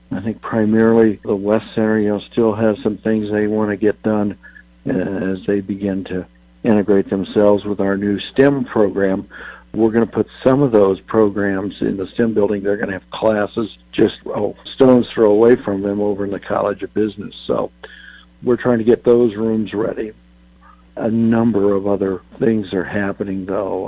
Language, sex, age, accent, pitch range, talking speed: English, male, 60-79, American, 100-115 Hz, 185 wpm